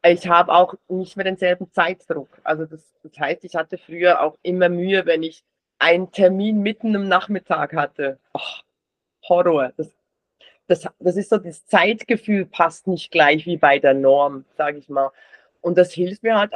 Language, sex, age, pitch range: German, female, 30-49, 180-225 Hz